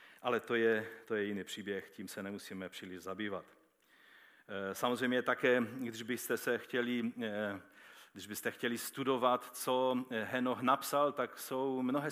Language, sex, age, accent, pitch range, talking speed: Czech, male, 40-59, native, 100-120 Hz, 120 wpm